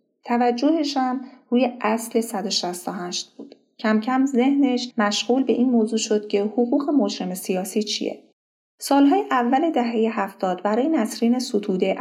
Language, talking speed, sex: Persian, 130 wpm, female